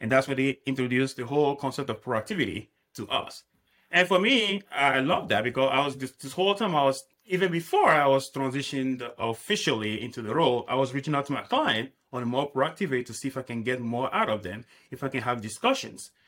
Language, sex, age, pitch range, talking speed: English, male, 30-49, 125-155 Hz, 225 wpm